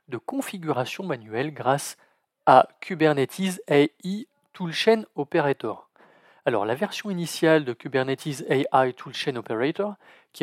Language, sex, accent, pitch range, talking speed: French, male, French, 130-200 Hz, 110 wpm